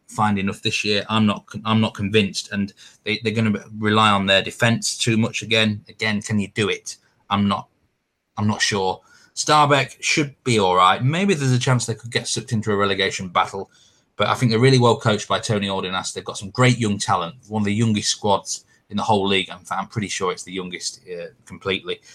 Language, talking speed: English, 220 wpm